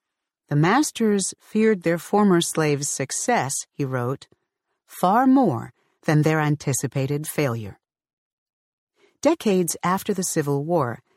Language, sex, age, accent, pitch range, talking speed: English, female, 50-69, American, 145-200 Hz, 105 wpm